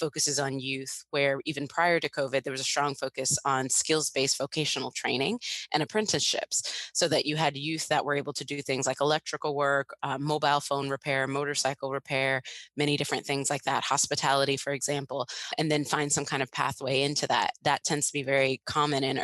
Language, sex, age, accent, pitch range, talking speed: English, female, 20-39, American, 135-150 Hz, 195 wpm